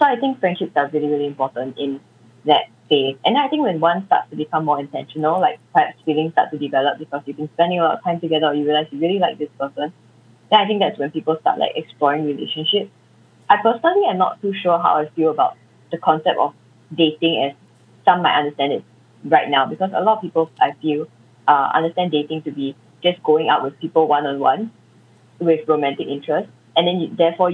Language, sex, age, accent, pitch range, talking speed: English, female, 20-39, Malaysian, 145-175 Hz, 220 wpm